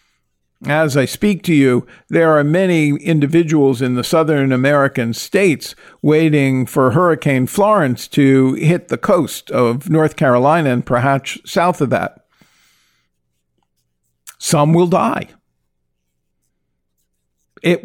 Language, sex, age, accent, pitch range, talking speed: English, male, 50-69, American, 120-165 Hz, 115 wpm